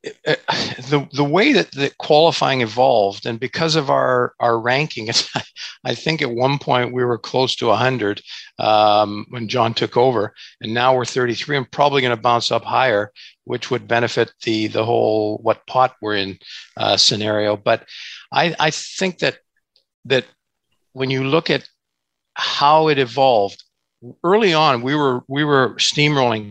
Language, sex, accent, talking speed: English, male, American, 165 wpm